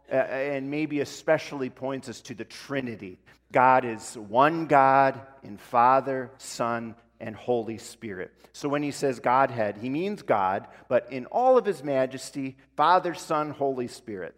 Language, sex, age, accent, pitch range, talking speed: English, male, 40-59, American, 125-180 Hz, 150 wpm